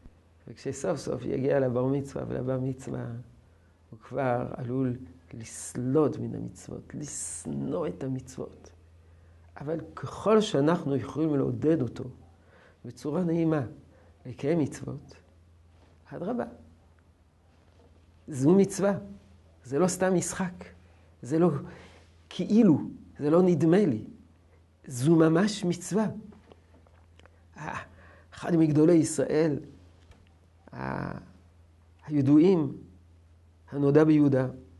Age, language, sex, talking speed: 50-69, Hebrew, male, 85 wpm